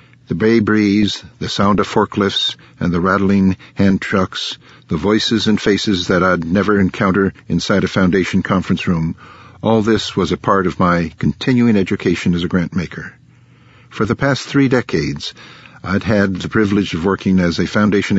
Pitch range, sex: 90-105 Hz, male